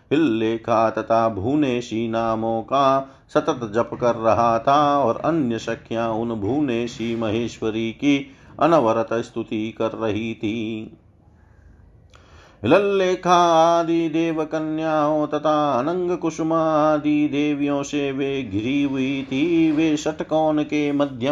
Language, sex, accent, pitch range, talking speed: Hindi, male, native, 115-145 Hz, 115 wpm